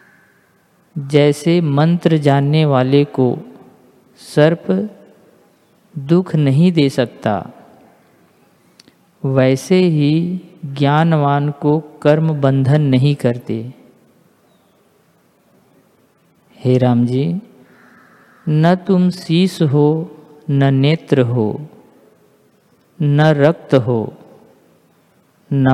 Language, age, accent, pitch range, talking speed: Hindi, 50-69, native, 140-170 Hz, 75 wpm